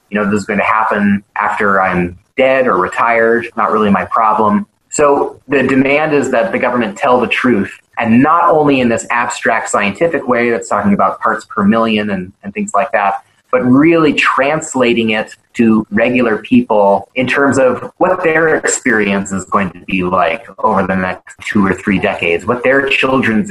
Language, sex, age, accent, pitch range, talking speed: English, male, 30-49, American, 105-145 Hz, 185 wpm